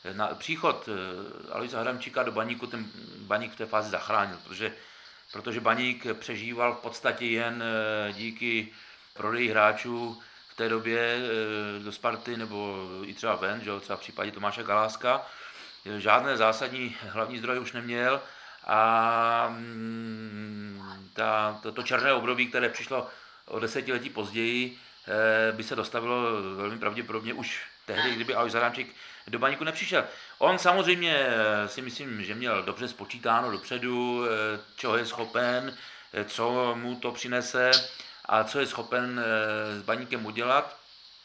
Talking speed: 130 wpm